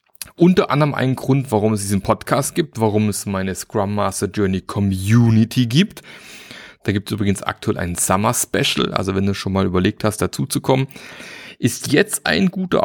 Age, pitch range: 30-49, 105-145 Hz